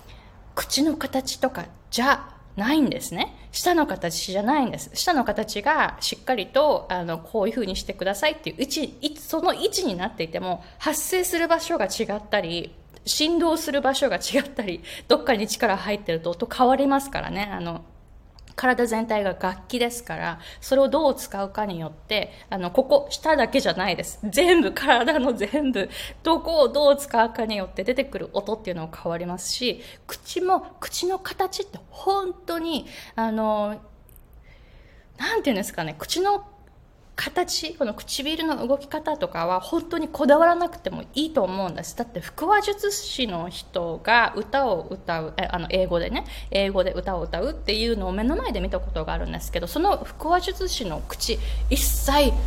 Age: 20-39